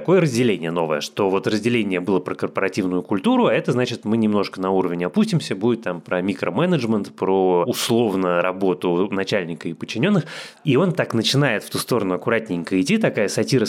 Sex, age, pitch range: male, 20-39, 95-130 Hz